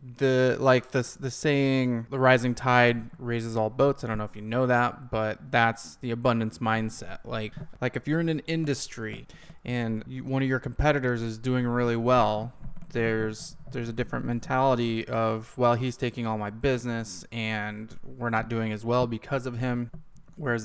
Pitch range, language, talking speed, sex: 115-130 Hz, English, 175 wpm, male